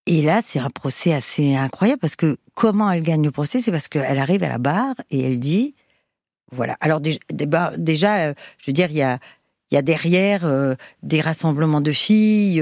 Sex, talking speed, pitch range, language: female, 200 wpm, 135-170 Hz, French